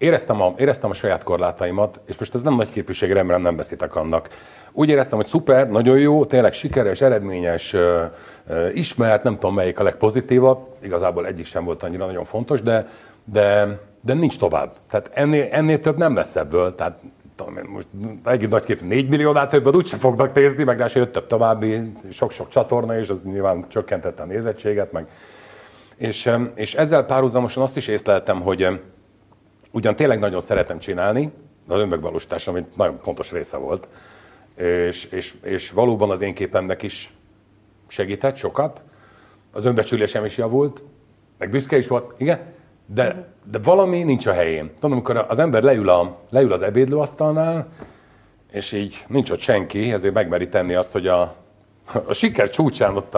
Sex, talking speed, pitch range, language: male, 160 wpm, 100-135 Hz, Hungarian